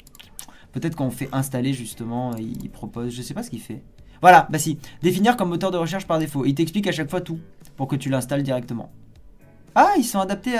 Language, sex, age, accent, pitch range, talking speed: French, male, 20-39, French, 130-190 Hz, 215 wpm